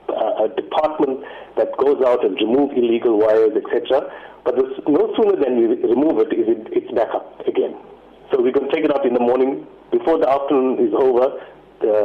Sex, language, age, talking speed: male, English, 50-69, 185 wpm